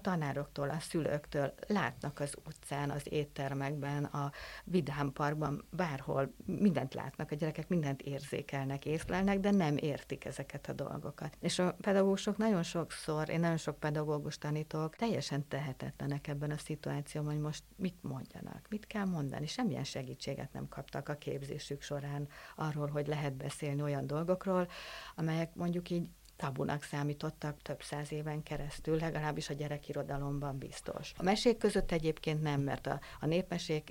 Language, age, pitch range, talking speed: Hungarian, 60-79, 145-175 Hz, 145 wpm